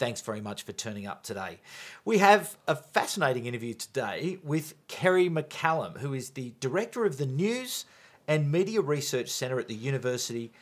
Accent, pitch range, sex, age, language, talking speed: Australian, 125-175 Hz, male, 40-59, English, 170 wpm